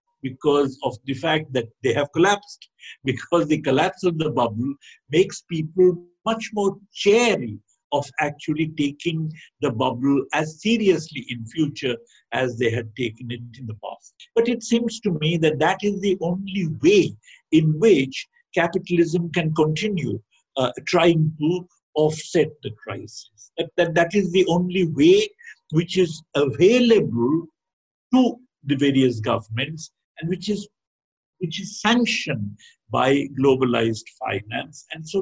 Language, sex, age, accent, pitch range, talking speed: English, male, 50-69, Indian, 130-175 Hz, 140 wpm